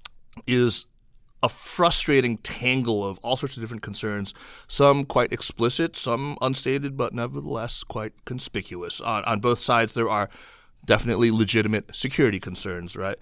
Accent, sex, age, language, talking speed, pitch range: American, male, 30-49, English, 135 wpm, 100-120 Hz